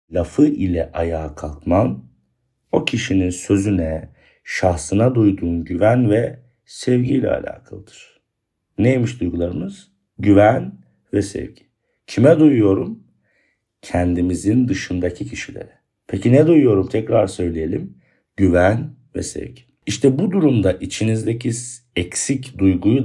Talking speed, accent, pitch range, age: 100 wpm, native, 85-115 Hz, 50-69